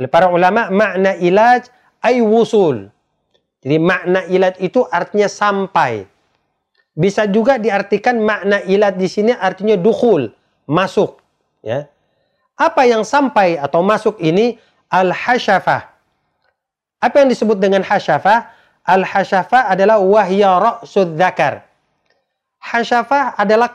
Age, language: 40-59, Indonesian